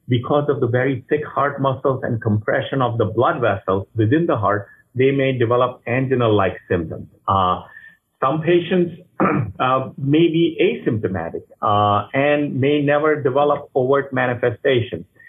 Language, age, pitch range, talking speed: English, 50-69, 110-140 Hz, 135 wpm